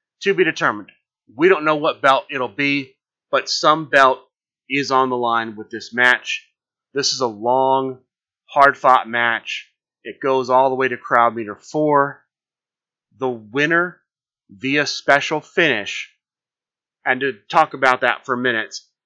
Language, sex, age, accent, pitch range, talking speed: English, male, 30-49, American, 120-140 Hz, 150 wpm